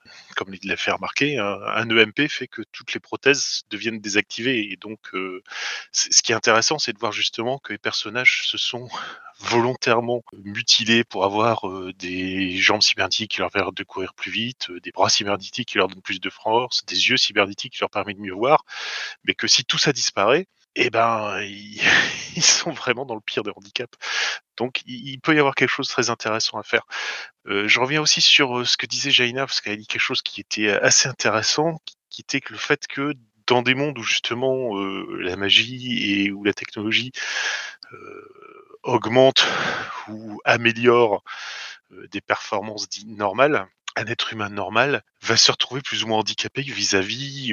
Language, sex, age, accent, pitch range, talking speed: French, male, 20-39, French, 105-130 Hz, 190 wpm